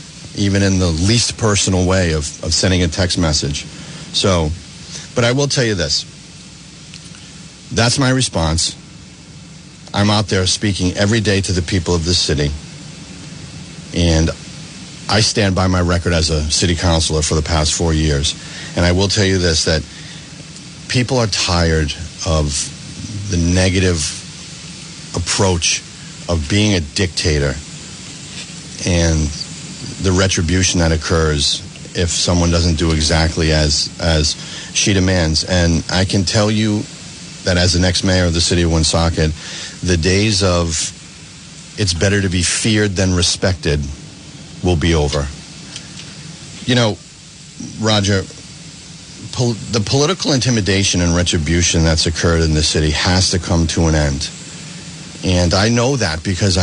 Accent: American